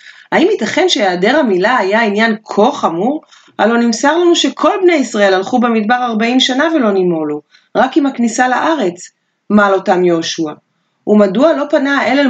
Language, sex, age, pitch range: Hebrew, female, 30-49, 195-275 Hz